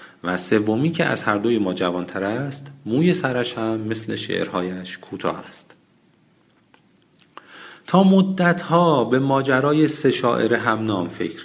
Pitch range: 100-135 Hz